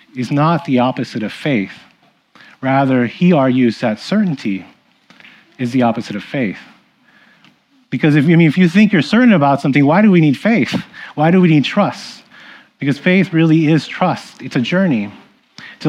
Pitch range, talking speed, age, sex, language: 125-165 Hz, 175 wpm, 30-49, male, English